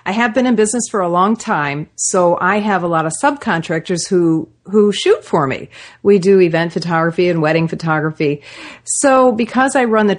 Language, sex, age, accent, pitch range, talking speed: English, female, 40-59, American, 155-195 Hz, 195 wpm